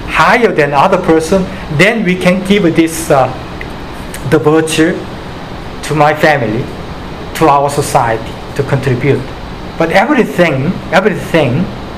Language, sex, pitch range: Korean, male, 125-160 Hz